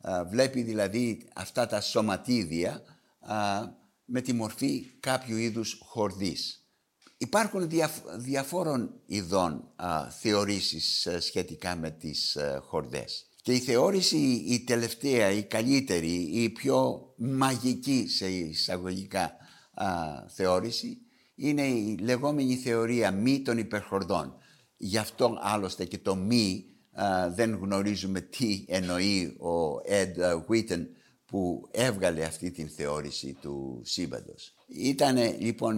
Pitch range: 90-125 Hz